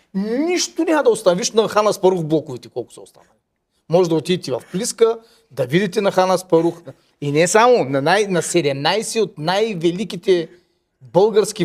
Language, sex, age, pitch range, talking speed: Bulgarian, male, 40-59, 145-185 Hz, 165 wpm